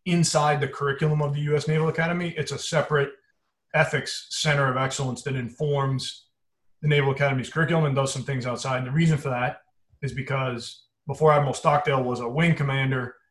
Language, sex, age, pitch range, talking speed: English, male, 30-49, 130-155 Hz, 180 wpm